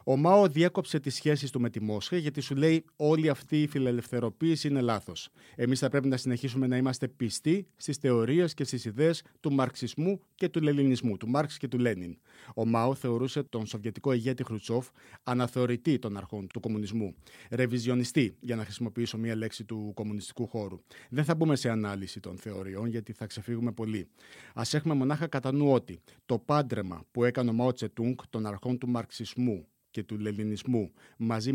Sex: male